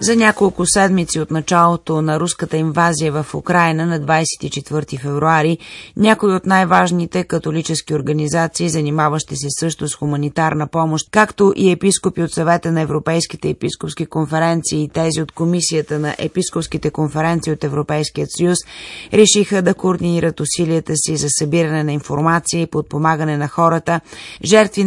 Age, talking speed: 30-49, 140 wpm